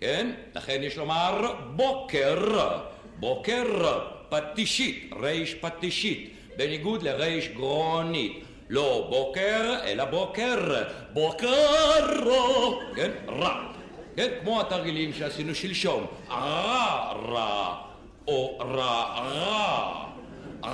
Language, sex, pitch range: Hebrew, male, 155-220 Hz